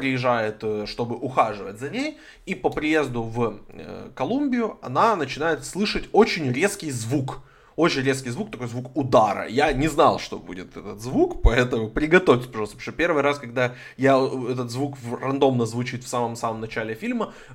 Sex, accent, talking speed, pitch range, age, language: male, native, 155 wpm, 125-190 Hz, 20-39, Ukrainian